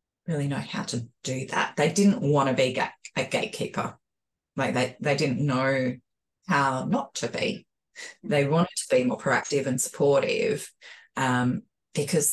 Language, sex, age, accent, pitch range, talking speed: English, female, 20-39, Australian, 135-195 Hz, 155 wpm